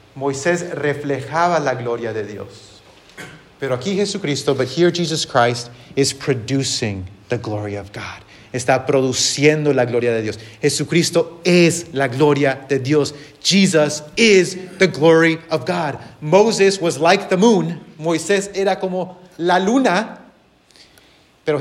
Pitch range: 120-170 Hz